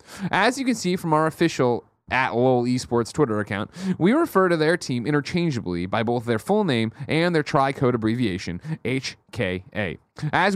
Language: English